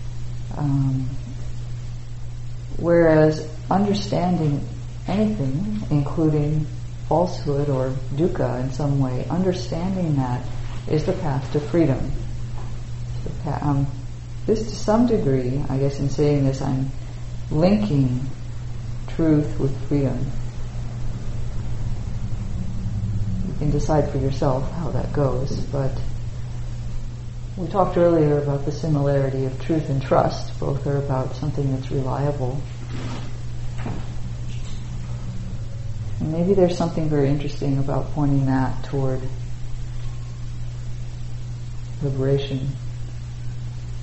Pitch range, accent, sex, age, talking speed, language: 120-140 Hz, American, female, 50-69, 95 wpm, English